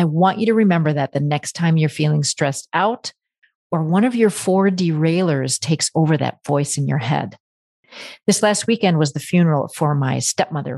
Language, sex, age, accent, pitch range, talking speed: English, female, 40-59, American, 150-195 Hz, 195 wpm